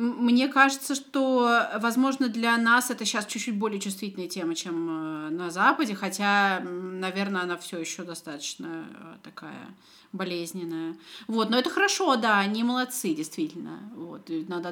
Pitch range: 180-240 Hz